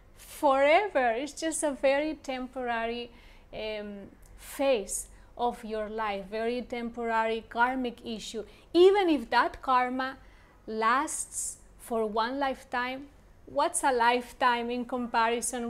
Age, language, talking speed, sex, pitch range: 30-49, English, 105 wpm, female, 225-270 Hz